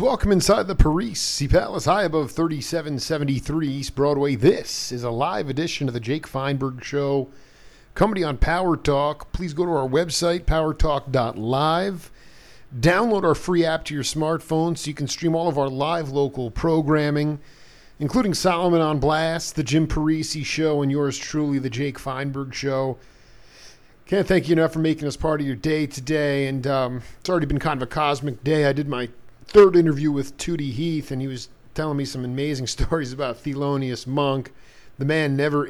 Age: 40-59